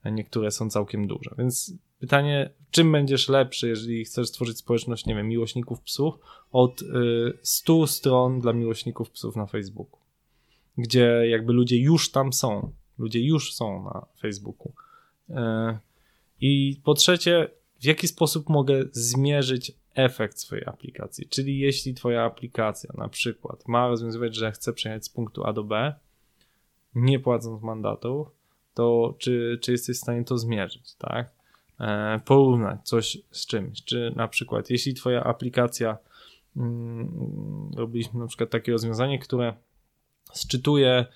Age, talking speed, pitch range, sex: 20-39, 135 wpm, 115-140 Hz, male